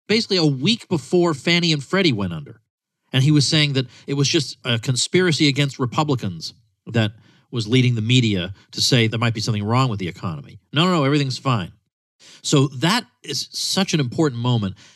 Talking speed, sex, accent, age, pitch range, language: 195 wpm, male, American, 40-59, 110-145 Hz, English